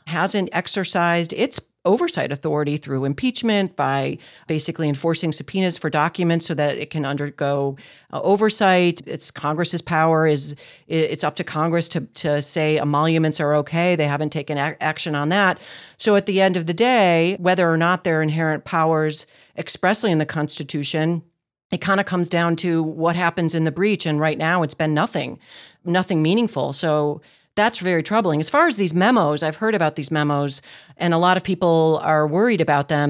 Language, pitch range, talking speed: English, 150-180 Hz, 185 wpm